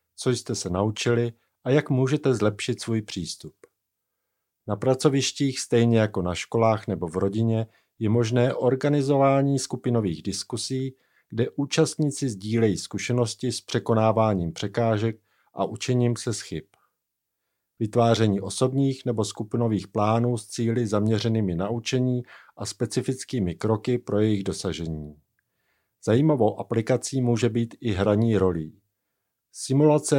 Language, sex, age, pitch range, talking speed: Czech, male, 50-69, 105-125 Hz, 115 wpm